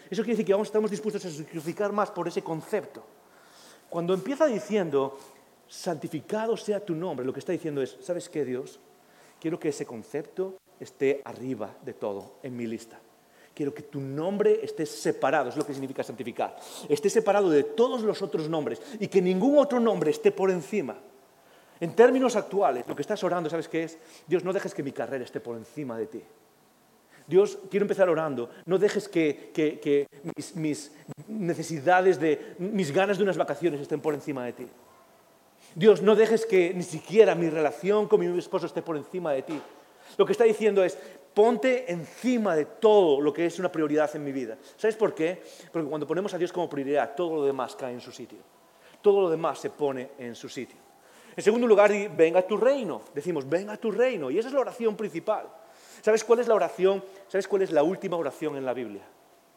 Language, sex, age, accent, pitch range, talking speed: English, male, 40-59, Spanish, 145-205 Hz, 200 wpm